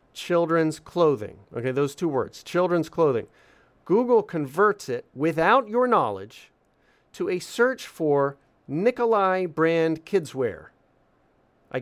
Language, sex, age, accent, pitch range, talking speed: English, male, 40-59, American, 140-210 Hz, 115 wpm